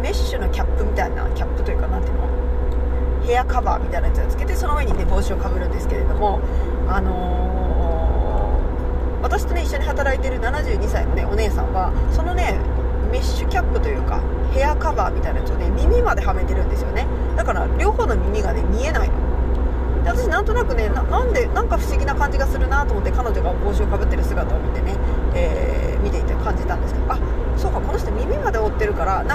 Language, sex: Japanese, female